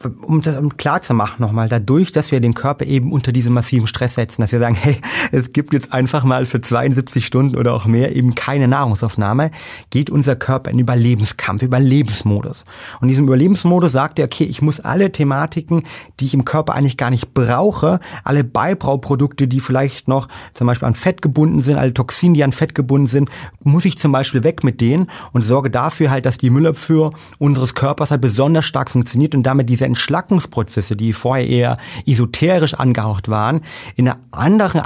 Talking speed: 195 wpm